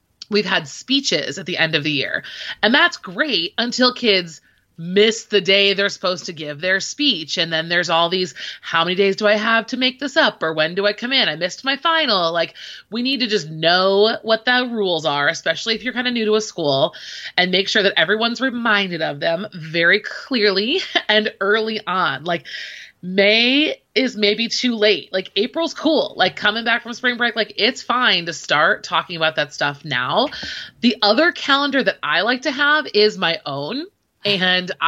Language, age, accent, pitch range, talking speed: English, 30-49, American, 170-225 Hz, 200 wpm